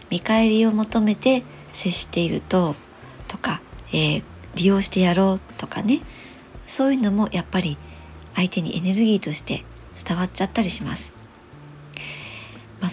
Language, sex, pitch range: Japanese, male, 160-215 Hz